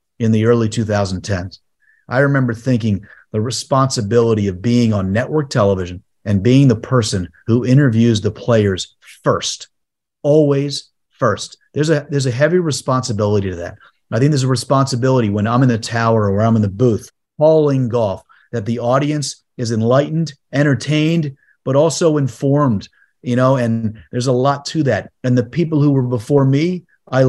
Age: 30-49